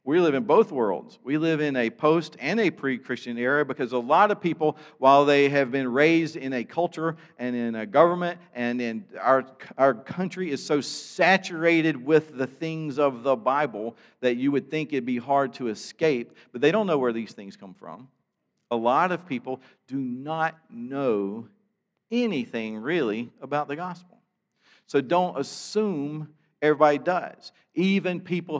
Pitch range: 125-175 Hz